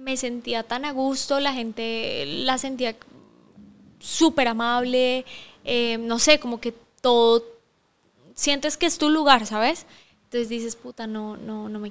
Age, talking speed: 10-29, 150 wpm